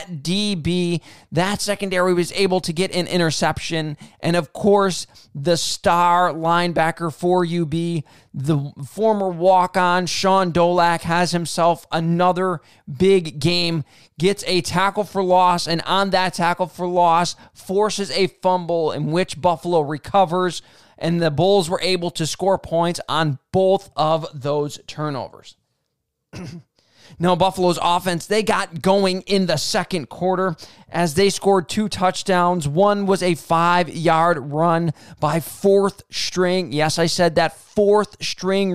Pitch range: 160-185 Hz